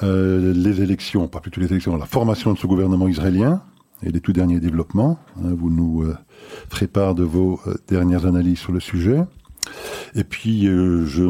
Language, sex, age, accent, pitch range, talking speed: French, male, 50-69, French, 85-110 Hz, 190 wpm